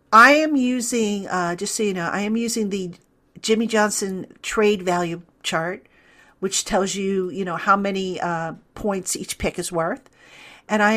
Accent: American